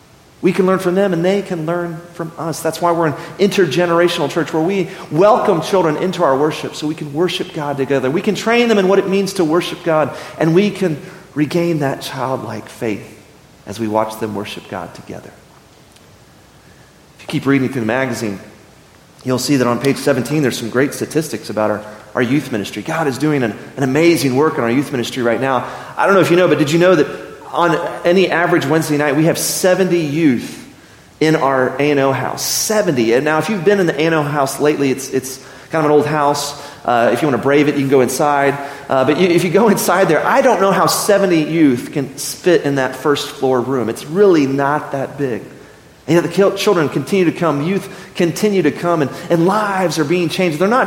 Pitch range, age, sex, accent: 135-180 Hz, 40-59, male, American